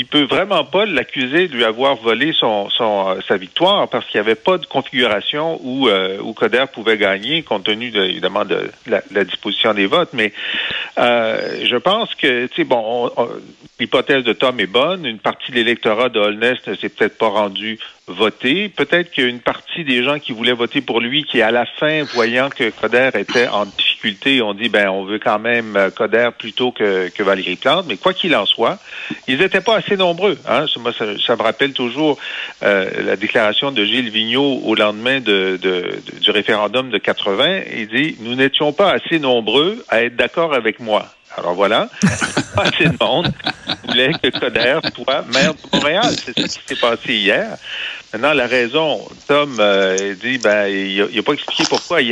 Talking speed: 200 wpm